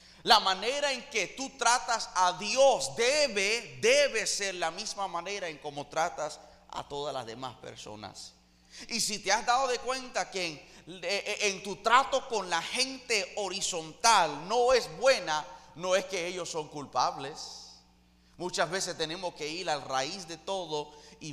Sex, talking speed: male, 160 wpm